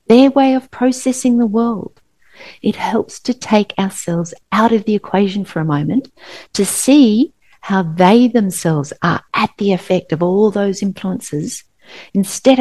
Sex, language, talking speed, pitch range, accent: female, English, 150 wpm, 175-240 Hz, Australian